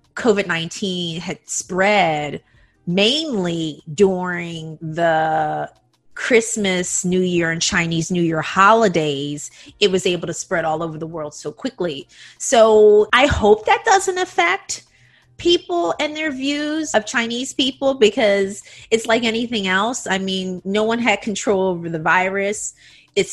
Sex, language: female, English